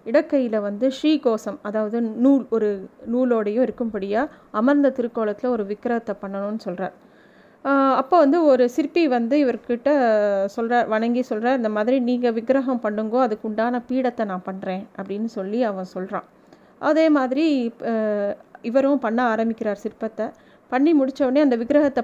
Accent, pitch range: native, 220-270 Hz